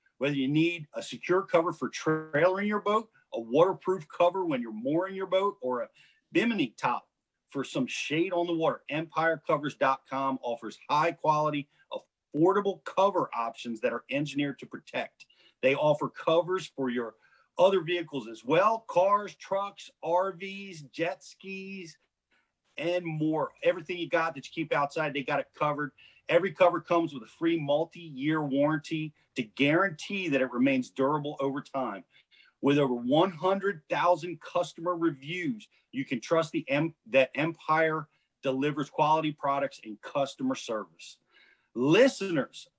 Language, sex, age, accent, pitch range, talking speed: English, male, 40-59, American, 140-180 Hz, 140 wpm